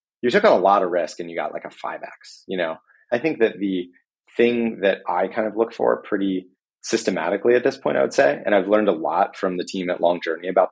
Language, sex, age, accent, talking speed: English, male, 30-49, American, 260 wpm